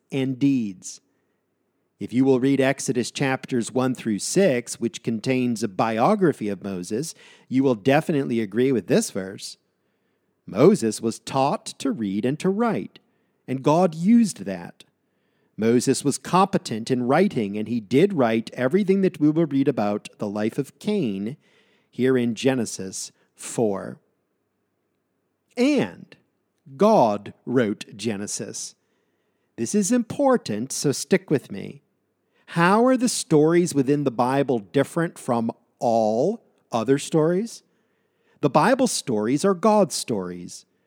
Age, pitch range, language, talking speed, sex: 50-69, 120-180 Hz, English, 130 wpm, male